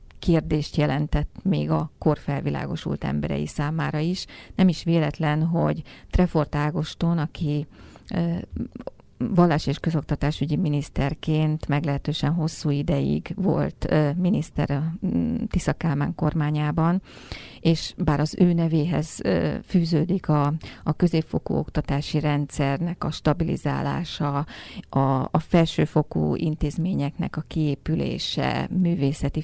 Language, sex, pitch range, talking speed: Hungarian, female, 145-165 Hz, 95 wpm